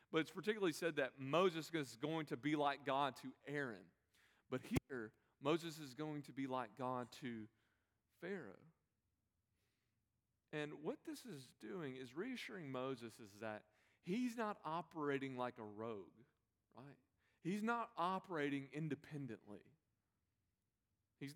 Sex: male